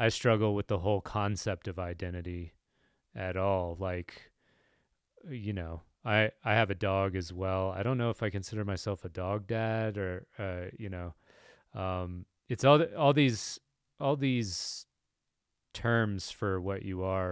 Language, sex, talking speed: English, male, 160 wpm